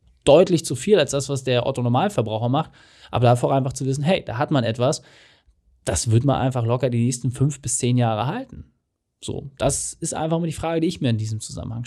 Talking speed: 230 wpm